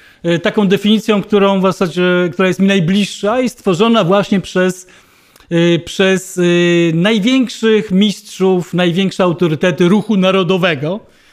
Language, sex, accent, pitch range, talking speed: Polish, male, native, 185-240 Hz, 105 wpm